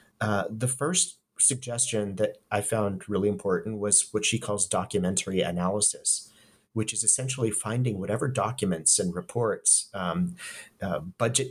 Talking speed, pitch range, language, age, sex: 135 wpm, 95-120 Hz, English, 30-49, male